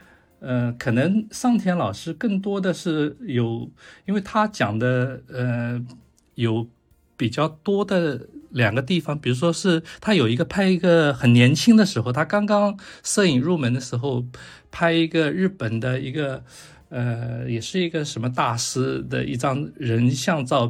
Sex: male